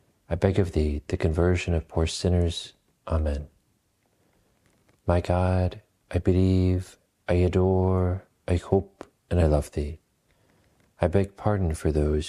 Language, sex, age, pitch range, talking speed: English, male, 40-59, 80-95 Hz, 130 wpm